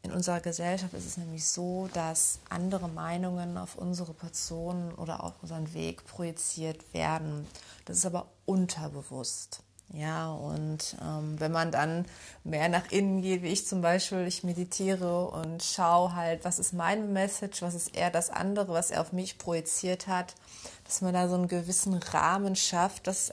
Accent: German